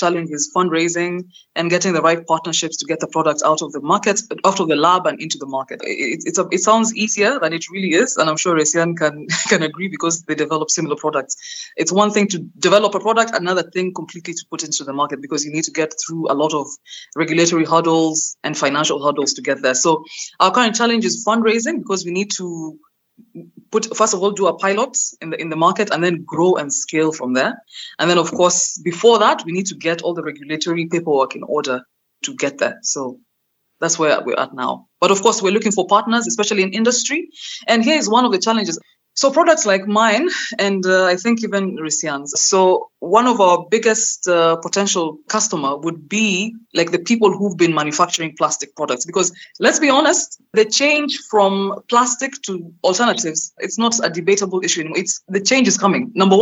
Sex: female